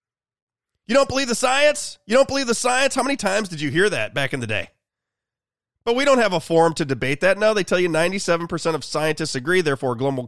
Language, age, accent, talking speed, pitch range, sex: English, 30-49, American, 235 wpm, 165-200 Hz, male